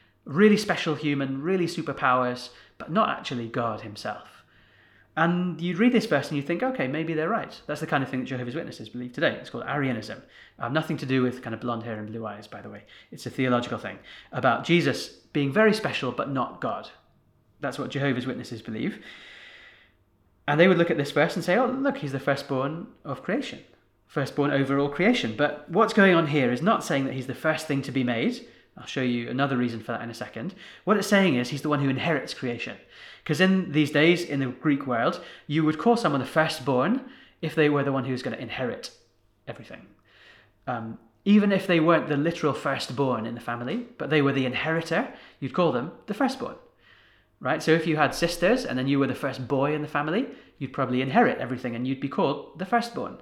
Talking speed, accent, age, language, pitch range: 220 wpm, British, 30-49, English, 125-170 Hz